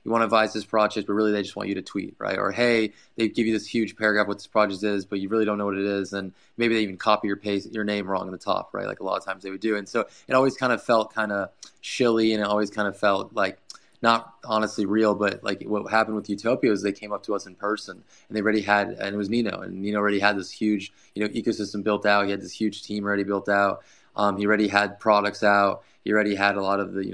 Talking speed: 290 wpm